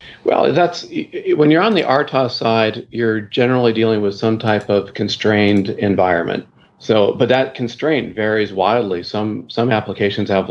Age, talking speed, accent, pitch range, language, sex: 40-59, 155 wpm, American, 100-115 Hz, English, male